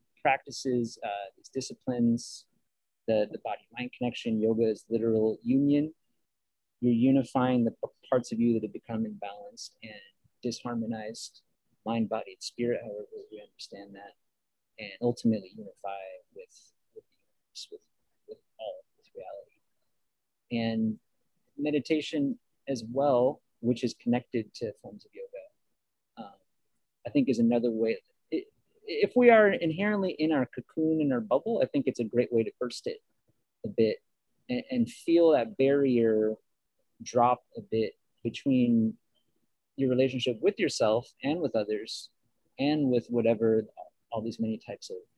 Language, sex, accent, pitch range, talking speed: English, male, American, 115-165 Hz, 145 wpm